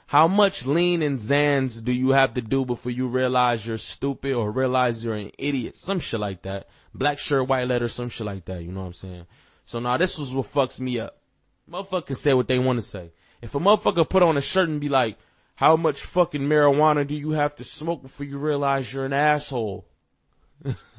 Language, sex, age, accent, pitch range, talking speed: English, male, 20-39, American, 115-155 Hz, 220 wpm